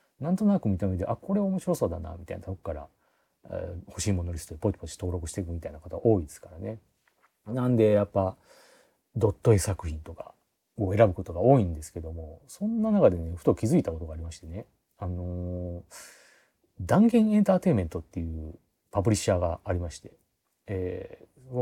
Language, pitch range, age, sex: Japanese, 85-125 Hz, 40-59, male